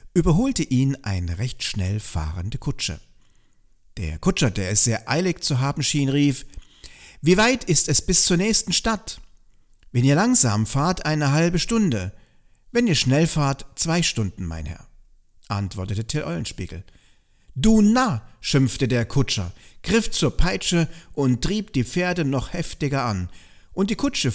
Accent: German